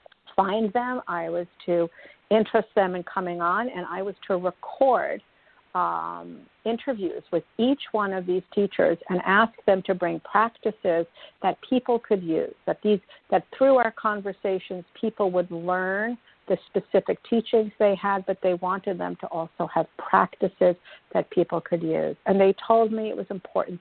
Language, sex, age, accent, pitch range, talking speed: English, female, 50-69, American, 175-215 Hz, 165 wpm